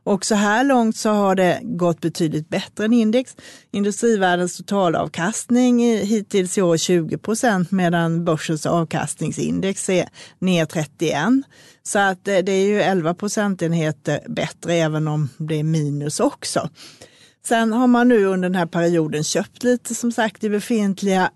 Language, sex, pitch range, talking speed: Swedish, female, 165-215 Hz, 150 wpm